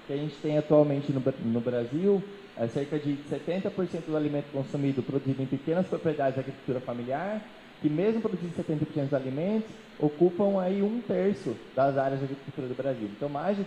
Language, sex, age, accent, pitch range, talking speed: Portuguese, male, 20-39, Brazilian, 135-180 Hz, 185 wpm